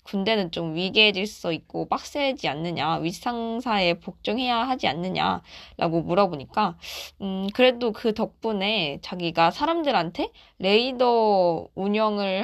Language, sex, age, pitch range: Korean, female, 20-39, 185-250 Hz